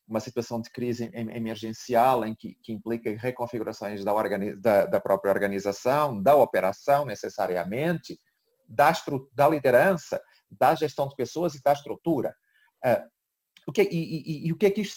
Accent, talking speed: Brazilian, 170 wpm